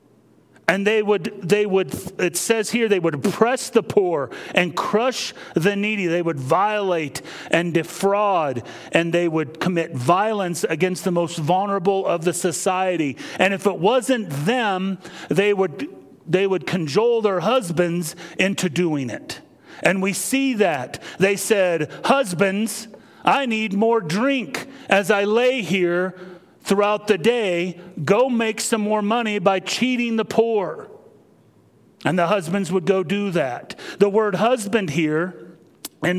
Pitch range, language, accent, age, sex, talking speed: 175-215 Hz, English, American, 40-59, male, 145 wpm